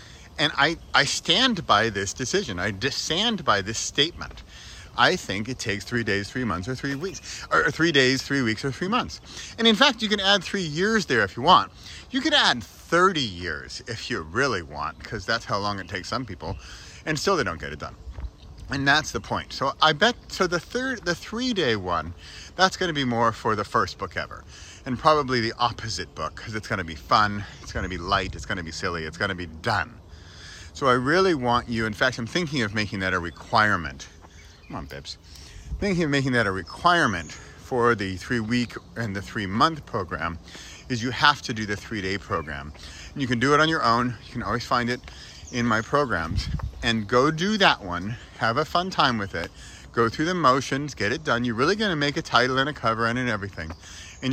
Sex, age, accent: male, 40-59, American